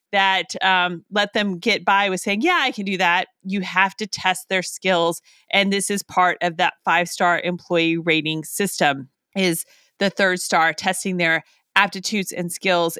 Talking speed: 175 wpm